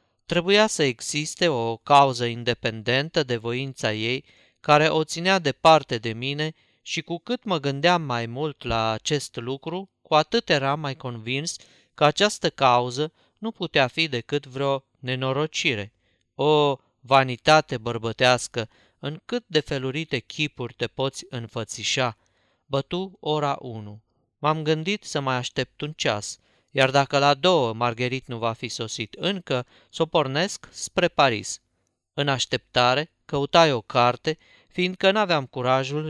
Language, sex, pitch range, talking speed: Romanian, male, 120-155 Hz, 140 wpm